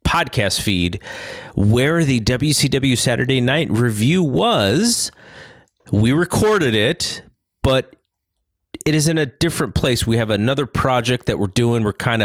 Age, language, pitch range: 30-49, English, 95-130 Hz